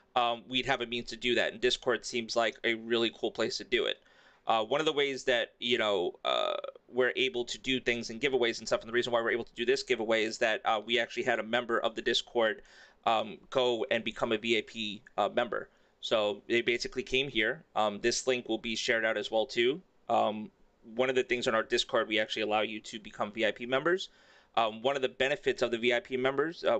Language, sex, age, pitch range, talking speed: English, male, 30-49, 115-145 Hz, 240 wpm